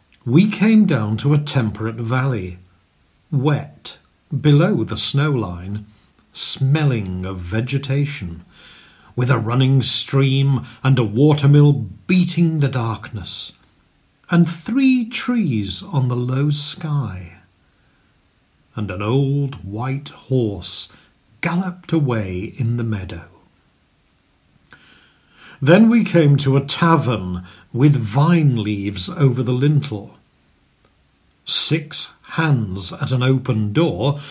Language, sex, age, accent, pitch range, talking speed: English, male, 40-59, British, 110-165 Hz, 105 wpm